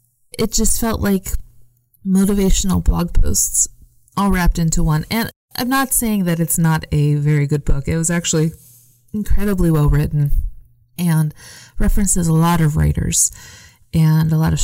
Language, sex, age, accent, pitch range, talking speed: English, female, 20-39, American, 125-165 Hz, 155 wpm